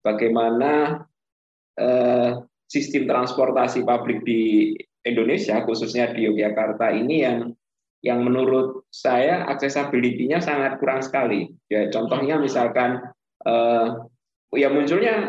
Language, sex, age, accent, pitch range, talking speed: Indonesian, male, 20-39, native, 115-140 Hz, 100 wpm